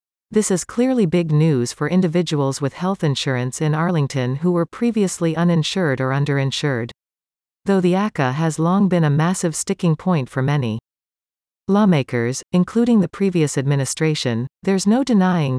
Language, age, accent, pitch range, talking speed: English, 40-59, American, 135-185 Hz, 145 wpm